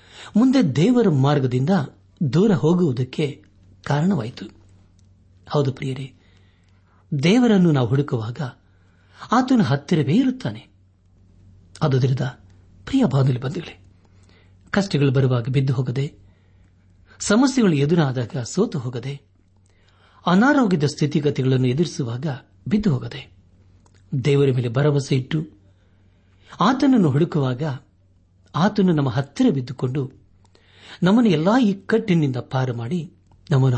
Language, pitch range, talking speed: Kannada, 95-160 Hz, 85 wpm